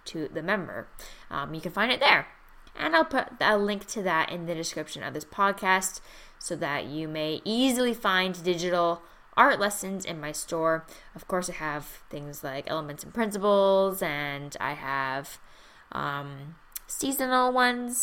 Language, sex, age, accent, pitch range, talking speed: English, female, 10-29, American, 155-225 Hz, 165 wpm